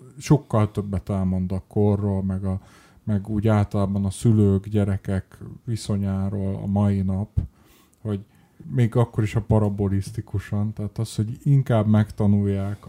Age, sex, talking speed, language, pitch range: 20-39, male, 130 wpm, Hungarian, 100-110 Hz